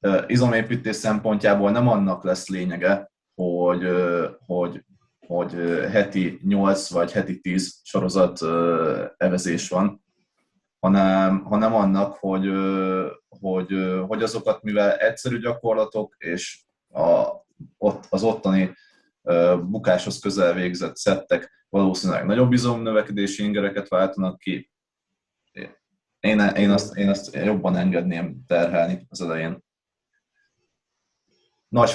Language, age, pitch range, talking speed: Hungarian, 20-39, 95-110 Hz, 95 wpm